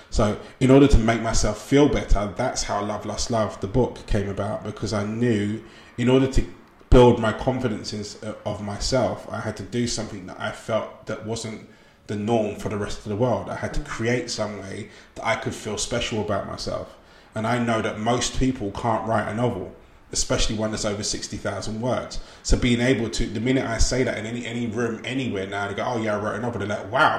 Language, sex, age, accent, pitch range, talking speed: English, male, 20-39, British, 105-120 Hz, 225 wpm